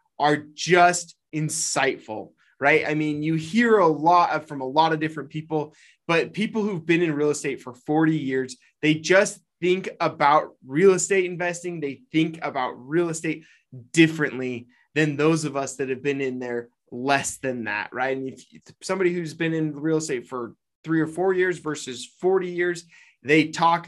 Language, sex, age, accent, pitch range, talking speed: English, male, 20-39, American, 150-185 Hz, 175 wpm